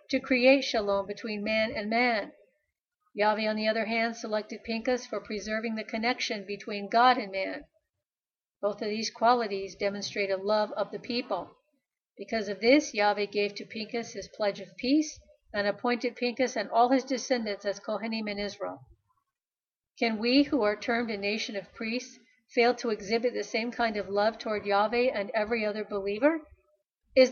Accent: American